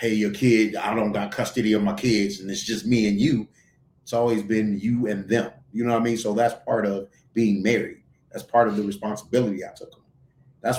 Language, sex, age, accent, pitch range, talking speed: English, male, 30-49, American, 105-135 Hz, 230 wpm